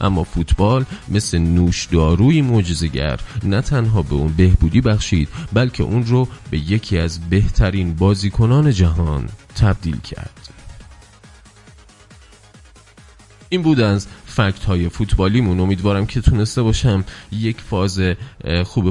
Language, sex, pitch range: Persian, male, 85-110 Hz